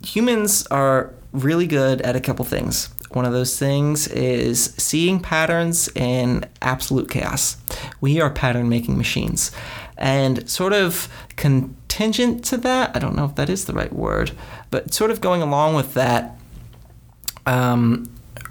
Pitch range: 120-145 Hz